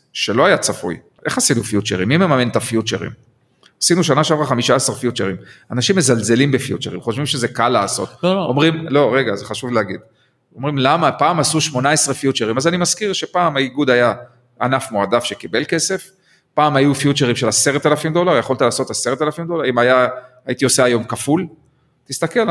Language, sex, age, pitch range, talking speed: Hebrew, male, 40-59, 120-160 Hz, 165 wpm